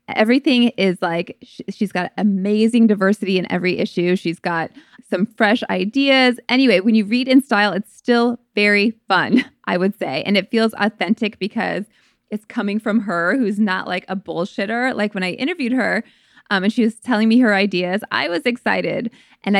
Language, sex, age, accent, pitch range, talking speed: English, female, 20-39, American, 185-240 Hz, 180 wpm